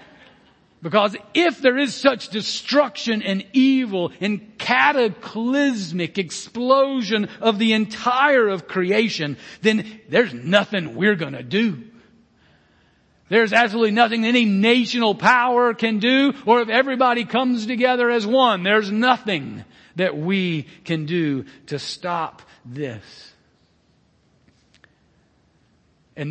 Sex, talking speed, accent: male, 110 wpm, American